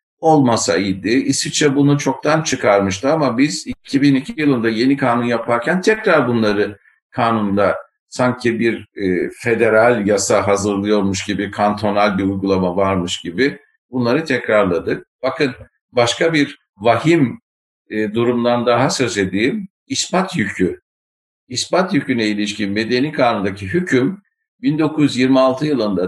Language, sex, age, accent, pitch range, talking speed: Turkish, male, 60-79, native, 100-140 Hz, 105 wpm